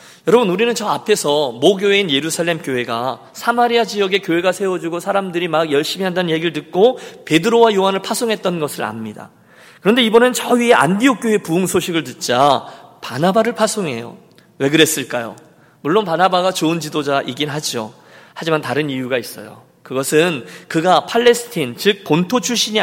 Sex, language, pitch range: male, Korean, 150-220 Hz